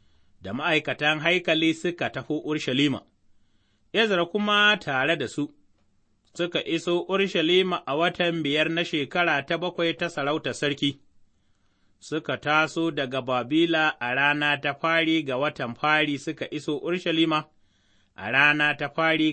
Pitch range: 110-170 Hz